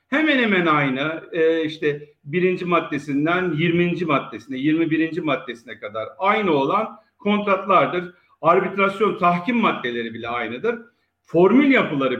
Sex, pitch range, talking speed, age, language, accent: male, 140-220 Hz, 110 wpm, 50-69, Turkish, native